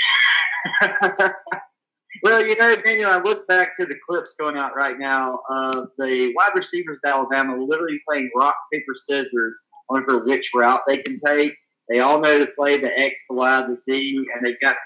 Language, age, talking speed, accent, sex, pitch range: English, 40-59, 180 wpm, American, male, 135-165 Hz